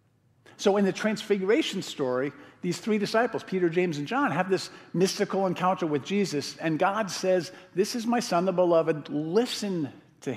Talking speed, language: 170 wpm, English